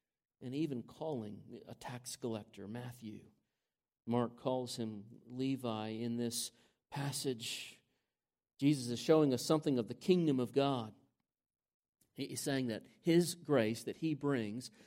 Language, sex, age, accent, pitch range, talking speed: English, male, 40-59, American, 120-150 Hz, 130 wpm